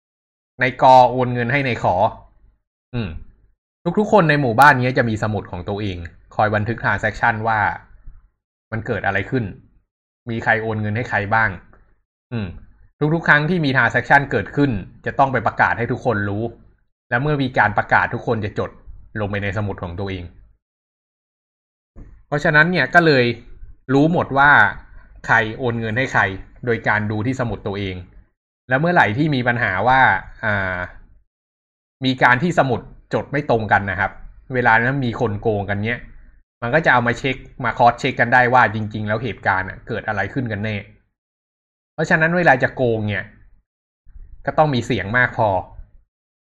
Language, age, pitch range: Thai, 20-39, 100-125 Hz